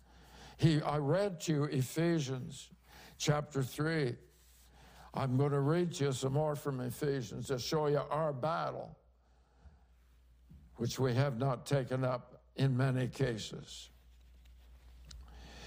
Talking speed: 120 wpm